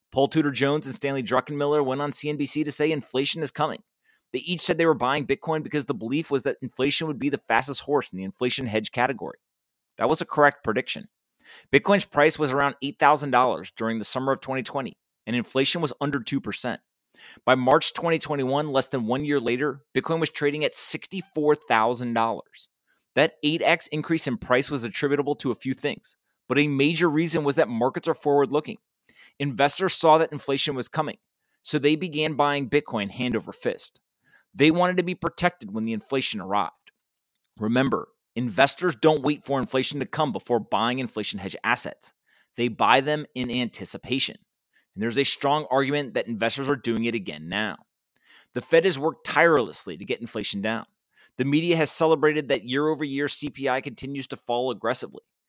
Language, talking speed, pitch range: English, 175 wpm, 125-150 Hz